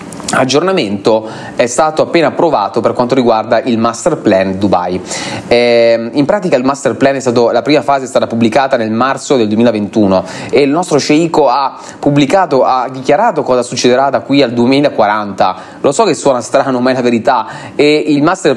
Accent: native